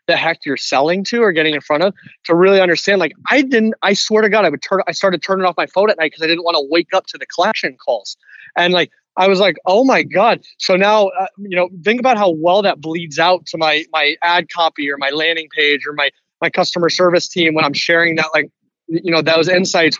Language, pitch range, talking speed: English, 150-180 Hz, 260 wpm